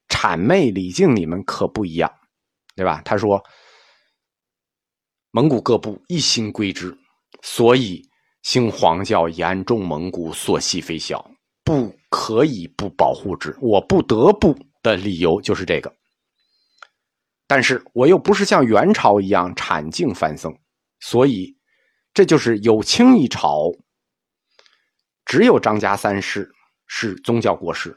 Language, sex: Chinese, male